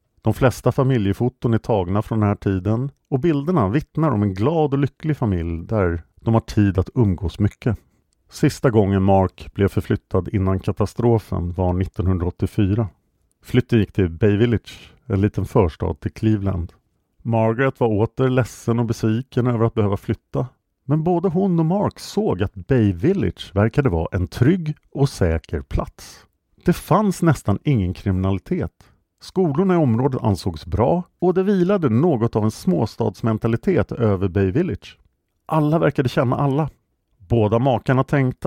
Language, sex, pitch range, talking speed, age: English, male, 95-135 Hz, 150 wpm, 50-69